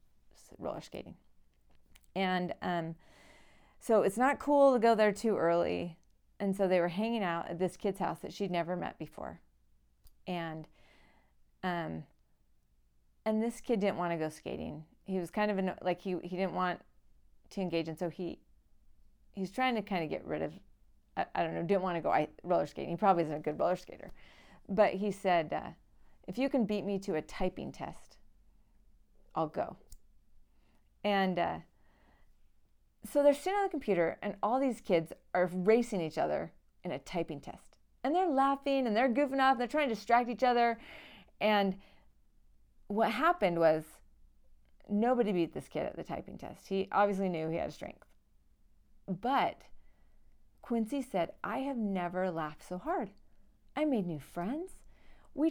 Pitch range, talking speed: 170-235 Hz, 175 wpm